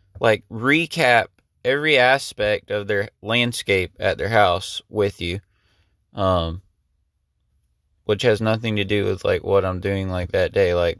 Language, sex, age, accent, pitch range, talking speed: English, male, 20-39, American, 95-115 Hz, 145 wpm